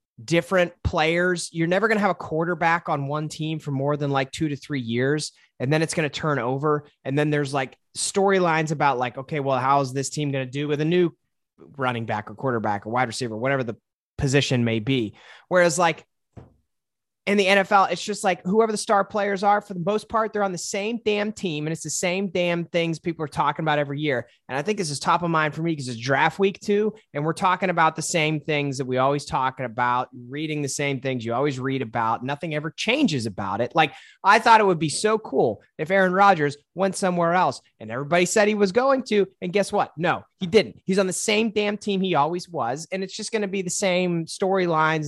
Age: 30-49